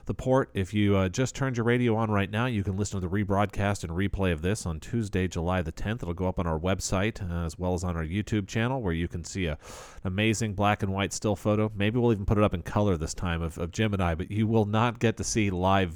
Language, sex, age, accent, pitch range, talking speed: English, male, 40-59, American, 90-110 Hz, 280 wpm